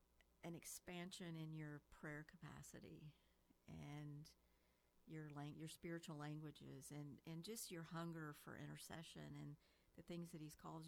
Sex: female